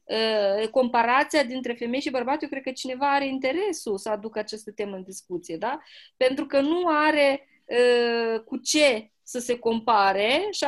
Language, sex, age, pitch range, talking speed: Romanian, female, 20-39, 230-310 Hz, 165 wpm